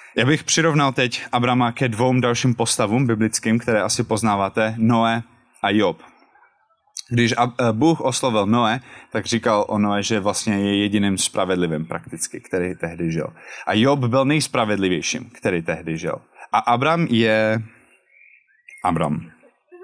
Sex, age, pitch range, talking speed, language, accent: male, 20-39, 105-130 Hz, 135 wpm, Czech, native